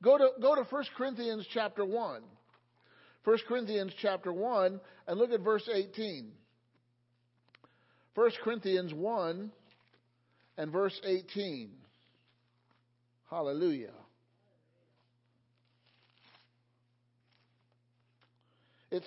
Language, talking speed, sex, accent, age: English, 80 wpm, male, American, 50-69